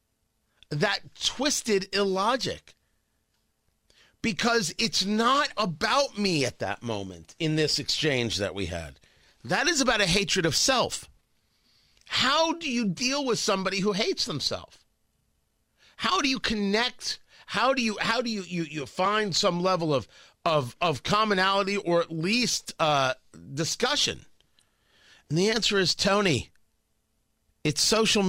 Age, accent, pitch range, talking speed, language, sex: 40-59, American, 130-205 Hz, 135 wpm, English, male